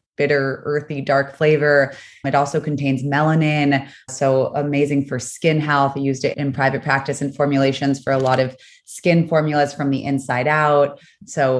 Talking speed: 165 wpm